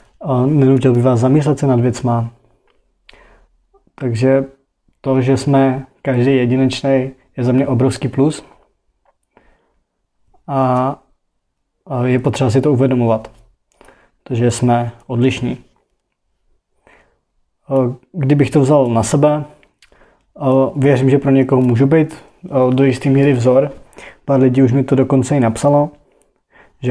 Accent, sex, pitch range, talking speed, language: native, male, 125-135 Hz, 115 wpm, Czech